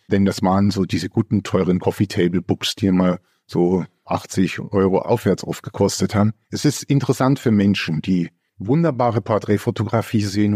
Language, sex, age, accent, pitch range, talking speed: German, male, 50-69, German, 105-120 Hz, 155 wpm